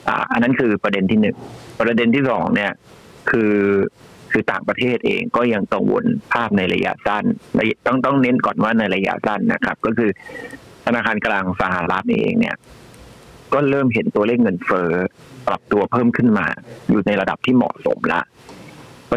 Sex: male